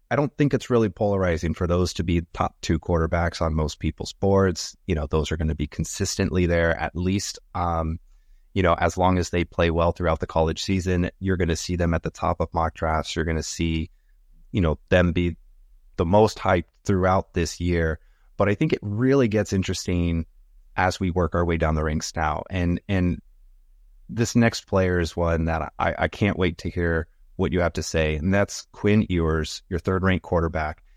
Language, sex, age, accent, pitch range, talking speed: English, male, 30-49, American, 80-95 Hz, 205 wpm